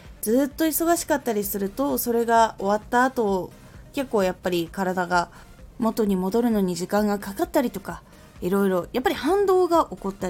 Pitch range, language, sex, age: 185-280 Hz, Japanese, female, 20-39